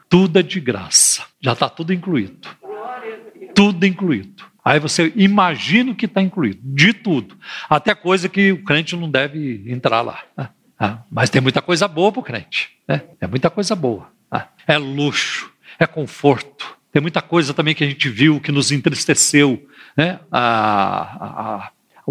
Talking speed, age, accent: 170 wpm, 50-69, Brazilian